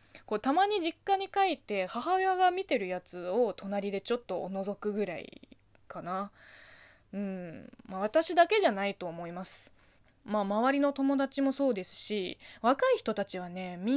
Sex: female